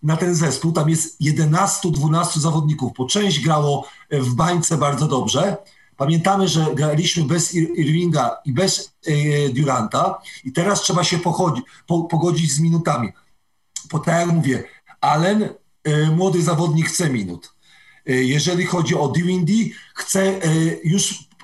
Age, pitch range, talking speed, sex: 40-59, 155-190 Hz, 125 wpm, male